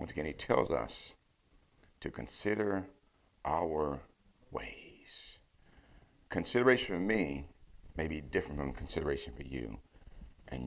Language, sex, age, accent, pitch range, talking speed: English, male, 60-79, American, 75-100 Hz, 110 wpm